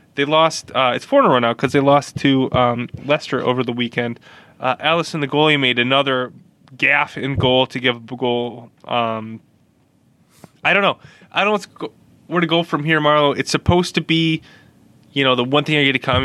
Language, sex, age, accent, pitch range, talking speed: English, male, 20-39, American, 120-155 Hz, 220 wpm